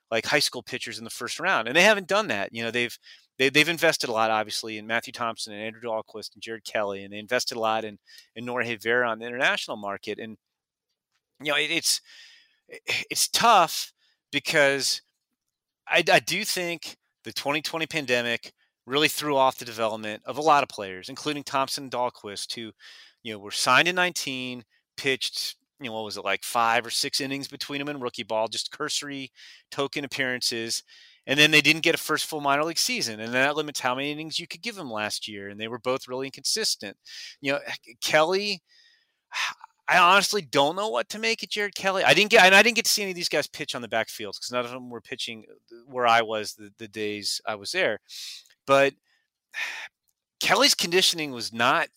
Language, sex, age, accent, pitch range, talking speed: English, male, 30-49, American, 115-160 Hz, 205 wpm